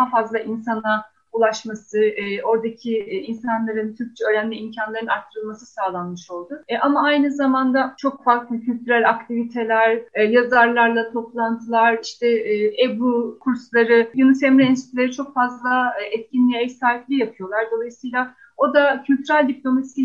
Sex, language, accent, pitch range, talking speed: female, Turkish, native, 225-270 Hz, 120 wpm